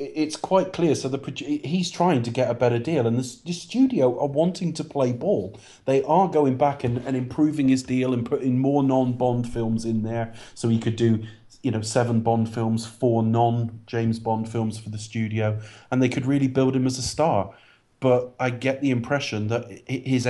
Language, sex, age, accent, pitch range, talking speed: English, male, 30-49, British, 115-130 Hz, 205 wpm